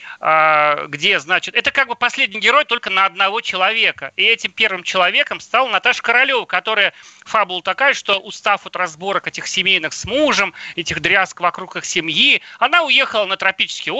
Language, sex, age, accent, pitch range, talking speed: Russian, male, 40-59, native, 180-225 Hz, 165 wpm